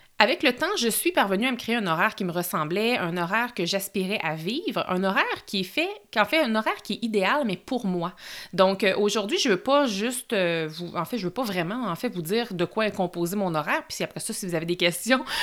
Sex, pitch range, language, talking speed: female, 180-235 Hz, French, 265 wpm